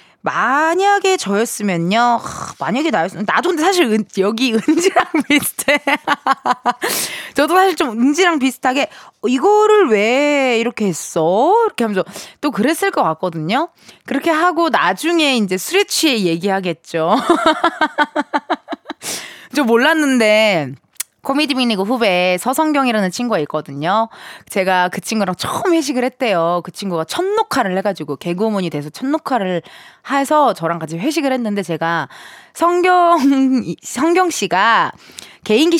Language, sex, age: Korean, female, 20-39